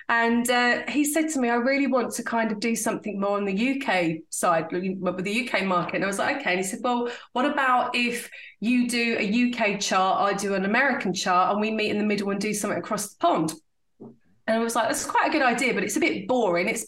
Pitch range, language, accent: 200-270 Hz, English, British